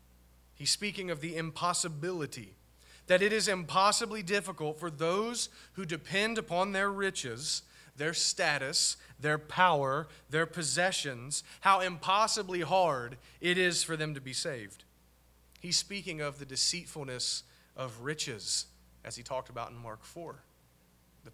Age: 30-49